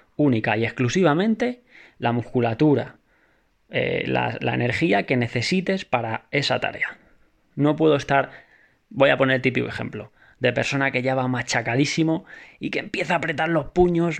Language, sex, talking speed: Spanish, male, 150 wpm